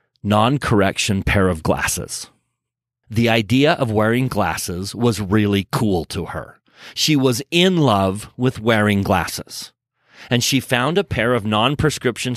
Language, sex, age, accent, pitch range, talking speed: English, male, 40-59, American, 110-150 Hz, 135 wpm